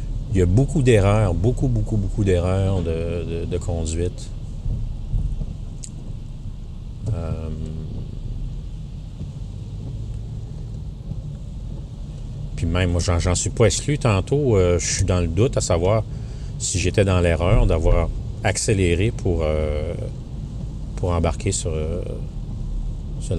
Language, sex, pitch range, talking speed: French, male, 85-110 Hz, 105 wpm